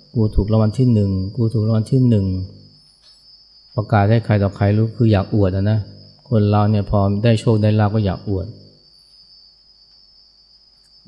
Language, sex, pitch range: Thai, male, 100-120 Hz